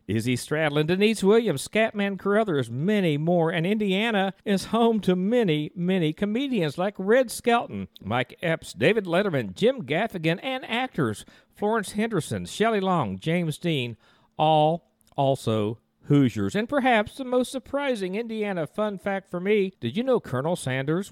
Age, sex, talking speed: 50-69, male, 145 wpm